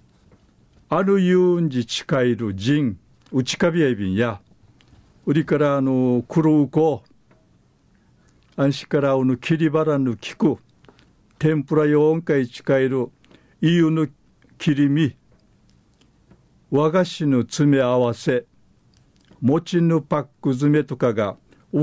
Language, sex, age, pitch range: Japanese, male, 50-69, 125-150 Hz